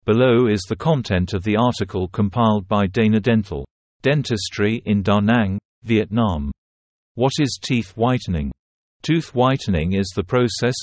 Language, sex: Vietnamese, male